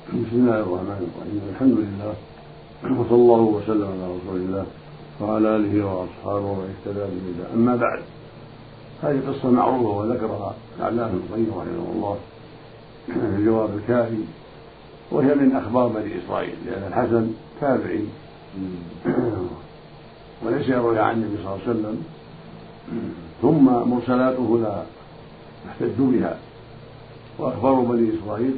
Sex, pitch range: male, 105-130 Hz